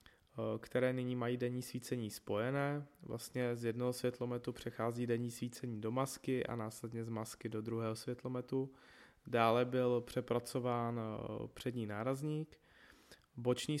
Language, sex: Czech, male